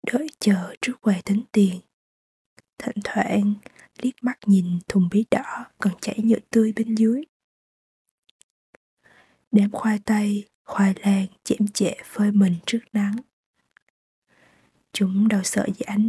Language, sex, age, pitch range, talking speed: Vietnamese, female, 20-39, 200-230 Hz, 135 wpm